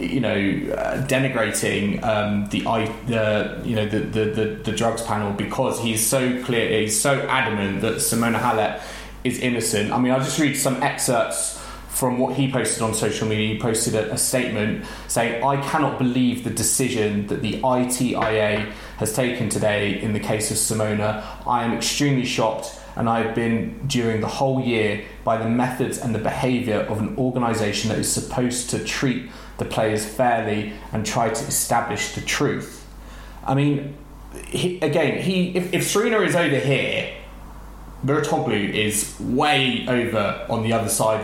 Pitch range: 110-135 Hz